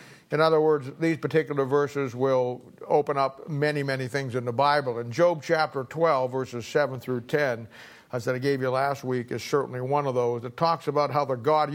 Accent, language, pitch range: American, English, 130-165 Hz